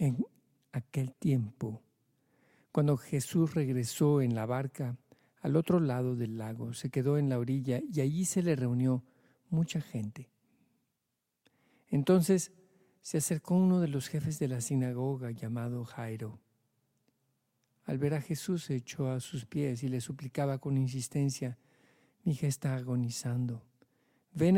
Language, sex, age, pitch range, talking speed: Spanish, male, 50-69, 125-155 Hz, 140 wpm